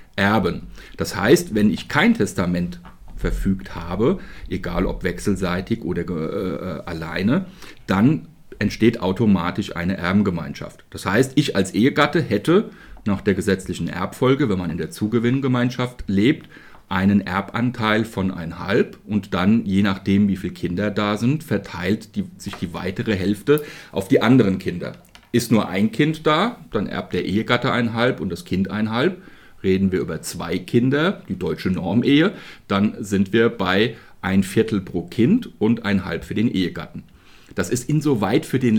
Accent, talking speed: German, 160 wpm